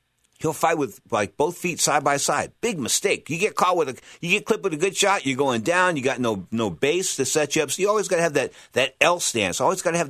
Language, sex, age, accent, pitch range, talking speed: English, male, 50-69, American, 115-175 Hz, 285 wpm